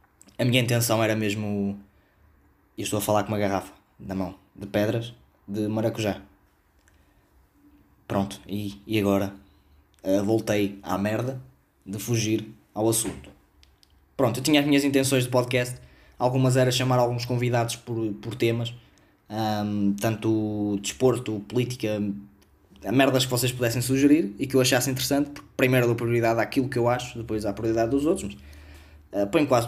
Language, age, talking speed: Portuguese, 20-39, 155 wpm